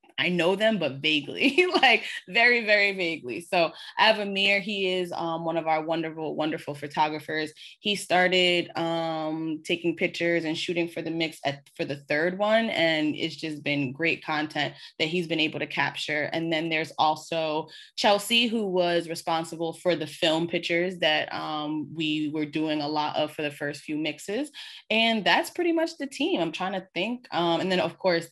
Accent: American